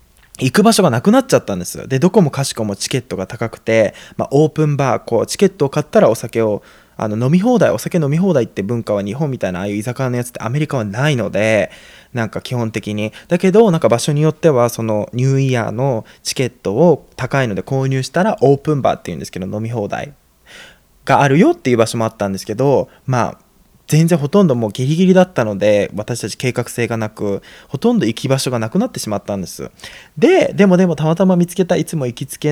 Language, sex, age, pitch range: Japanese, male, 20-39, 115-165 Hz